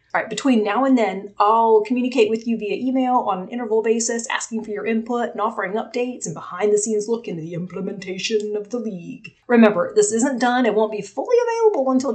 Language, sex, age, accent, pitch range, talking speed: English, female, 30-49, American, 200-255 Hz, 200 wpm